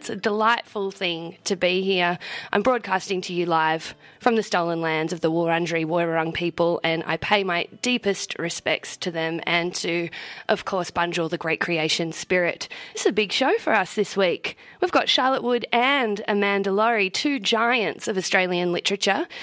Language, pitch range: English, 185-255 Hz